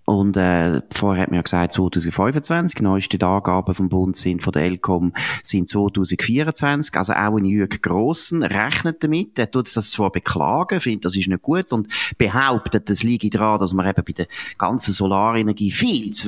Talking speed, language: 175 wpm, German